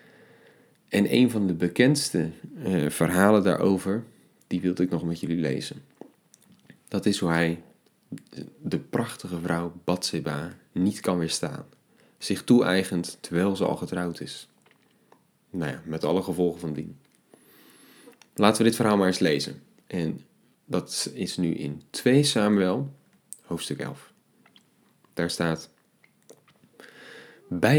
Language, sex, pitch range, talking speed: Dutch, male, 85-110 Hz, 130 wpm